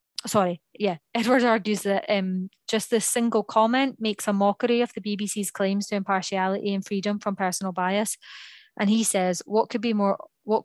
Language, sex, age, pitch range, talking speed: English, female, 20-39, 185-220 Hz, 180 wpm